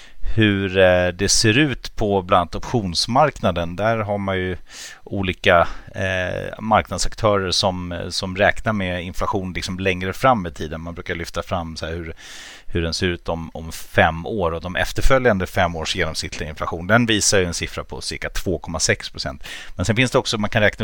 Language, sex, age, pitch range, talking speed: Swedish, male, 30-49, 85-105 Hz, 185 wpm